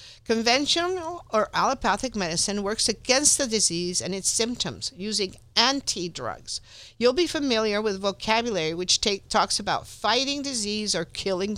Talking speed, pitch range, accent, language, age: 135 wpm, 180-245 Hz, American, English, 50-69